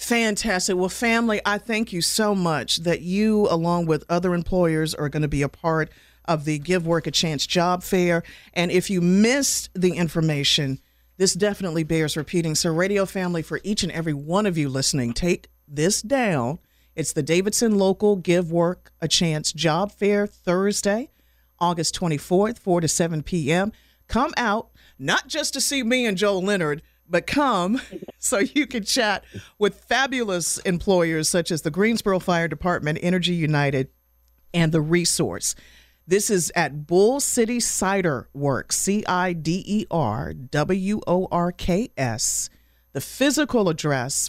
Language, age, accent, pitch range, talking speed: English, 50-69, American, 155-205 Hz, 150 wpm